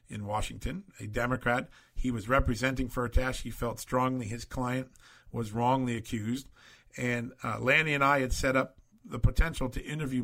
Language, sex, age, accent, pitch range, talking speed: English, male, 50-69, American, 120-135 Hz, 165 wpm